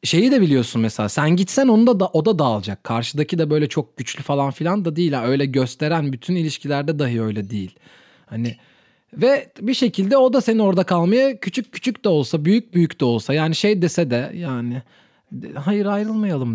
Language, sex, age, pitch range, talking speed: Turkish, male, 30-49, 125-205 Hz, 190 wpm